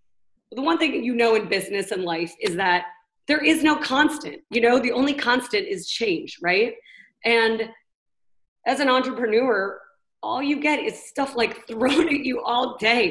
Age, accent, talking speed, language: 30-49, American, 180 wpm, English